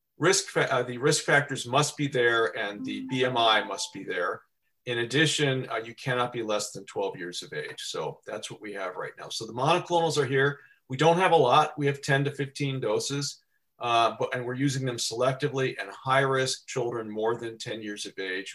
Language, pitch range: English, 120-145 Hz